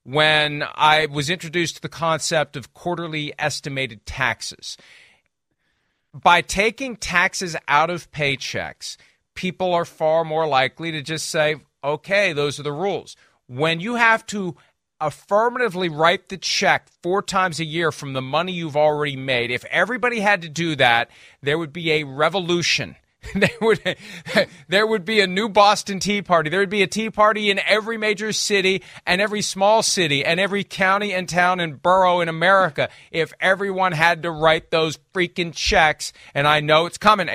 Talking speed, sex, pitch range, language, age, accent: 170 wpm, male, 150-195 Hz, English, 40-59, American